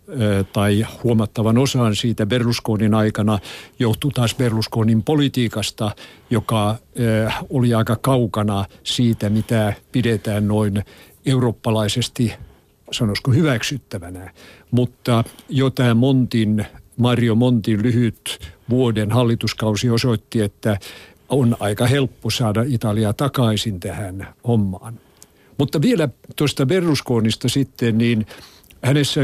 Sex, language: male, Finnish